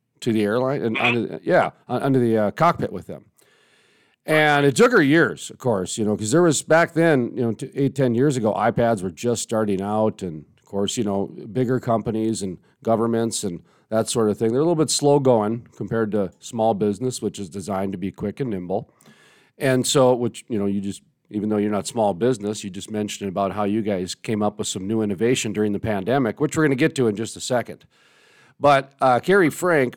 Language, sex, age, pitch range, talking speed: English, male, 40-59, 105-140 Hz, 220 wpm